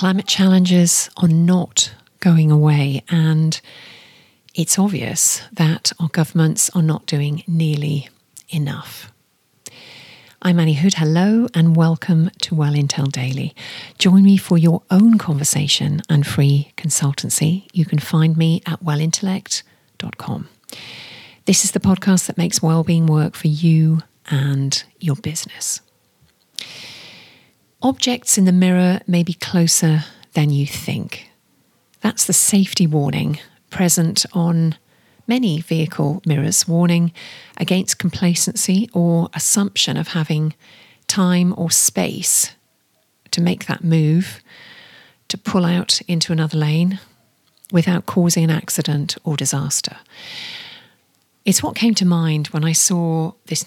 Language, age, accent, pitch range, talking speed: English, 40-59, British, 155-185 Hz, 120 wpm